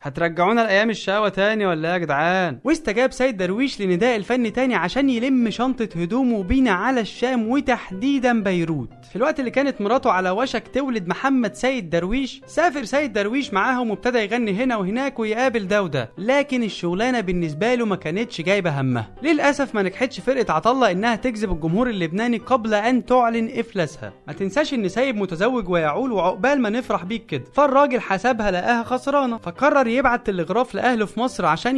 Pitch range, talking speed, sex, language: 185-255 Hz, 165 wpm, male, Arabic